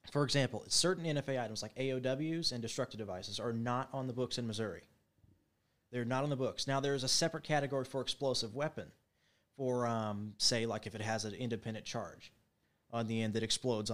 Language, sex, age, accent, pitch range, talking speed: English, male, 30-49, American, 115-150 Hz, 195 wpm